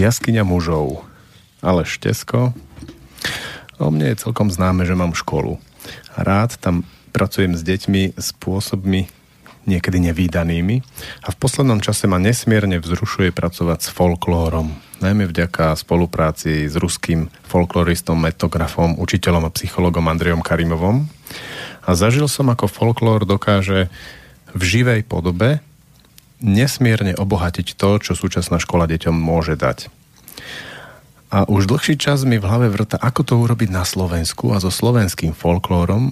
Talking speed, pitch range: 130 wpm, 85-105 Hz